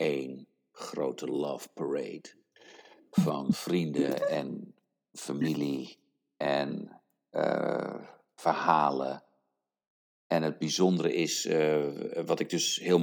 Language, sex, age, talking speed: English, male, 50-69, 90 wpm